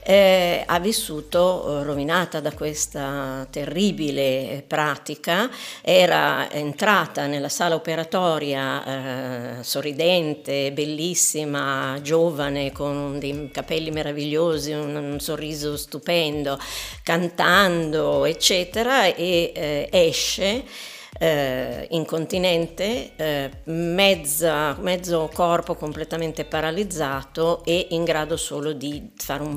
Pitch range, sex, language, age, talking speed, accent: 145-175 Hz, female, Italian, 50-69, 90 wpm, native